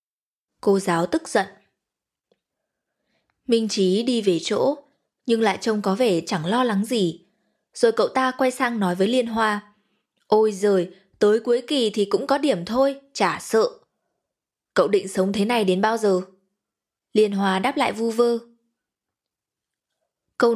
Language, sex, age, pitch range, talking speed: Vietnamese, female, 20-39, 195-255 Hz, 160 wpm